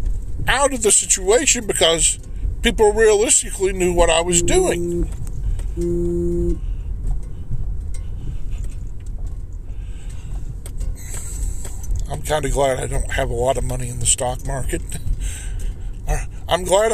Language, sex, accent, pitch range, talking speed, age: English, male, American, 90-150 Hz, 105 wpm, 50-69